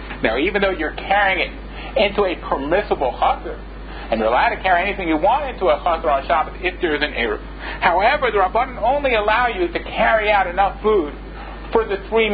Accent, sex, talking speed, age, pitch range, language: American, male, 205 wpm, 50-69, 205-255 Hz, English